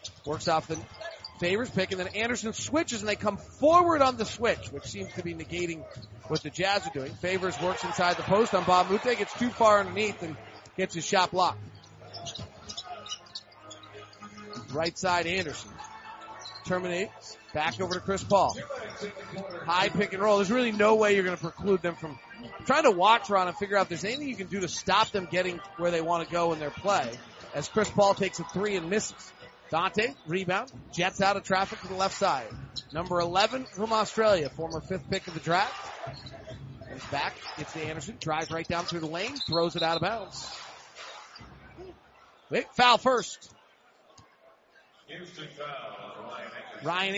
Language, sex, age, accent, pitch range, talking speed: English, male, 40-59, American, 155-200 Hz, 175 wpm